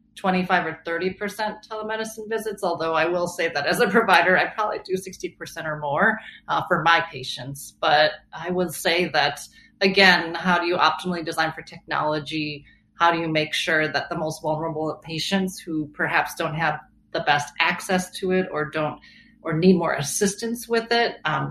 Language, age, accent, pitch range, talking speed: English, 30-49, American, 155-195 Hz, 180 wpm